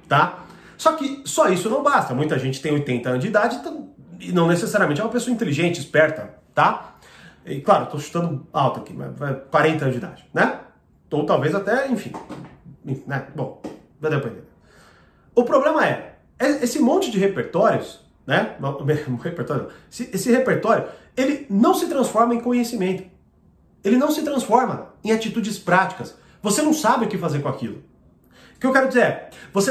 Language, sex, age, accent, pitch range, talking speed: Portuguese, male, 30-49, Brazilian, 165-245 Hz, 165 wpm